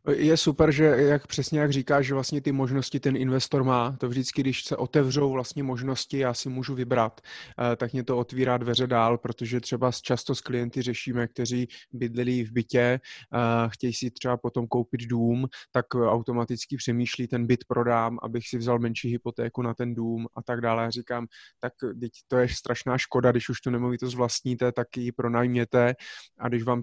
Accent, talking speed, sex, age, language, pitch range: native, 190 wpm, male, 20-39, Czech, 120-130 Hz